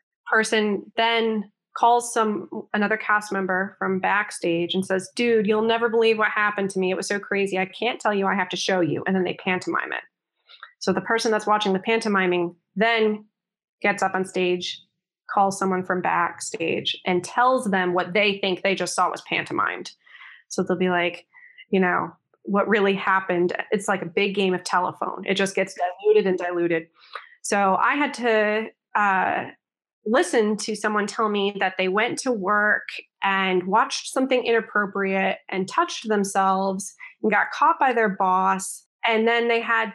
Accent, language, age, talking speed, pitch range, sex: American, English, 20-39, 175 wpm, 190-225 Hz, female